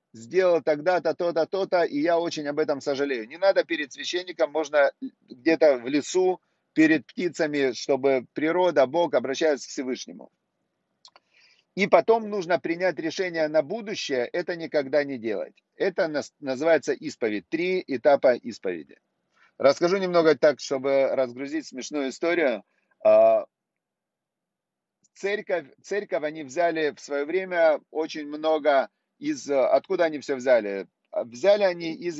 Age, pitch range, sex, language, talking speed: 40-59, 140-185 Hz, male, Russian, 125 wpm